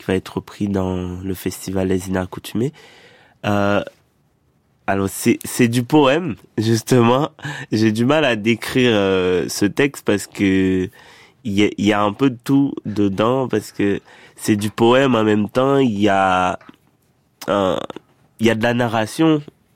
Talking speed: 150 wpm